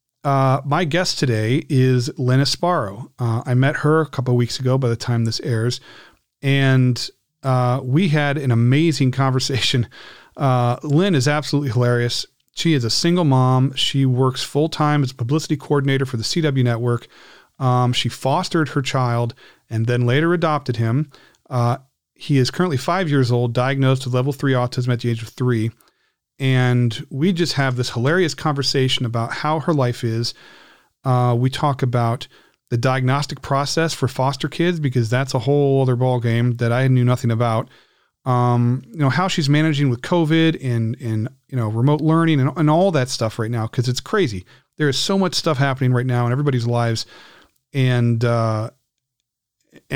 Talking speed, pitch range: 175 wpm, 120-145 Hz